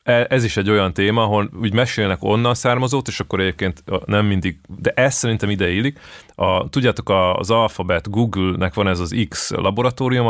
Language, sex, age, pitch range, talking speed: Hungarian, male, 30-49, 95-130 Hz, 175 wpm